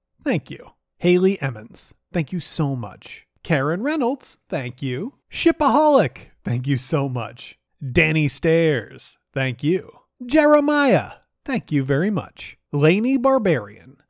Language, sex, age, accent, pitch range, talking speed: English, male, 30-49, American, 140-230 Hz, 120 wpm